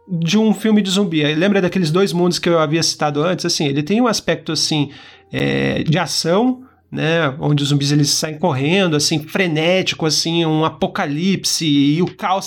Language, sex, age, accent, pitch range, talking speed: Portuguese, male, 30-49, Brazilian, 170-215 Hz, 185 wpm